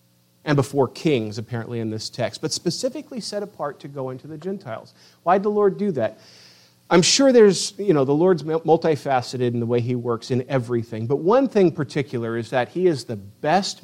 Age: 40-59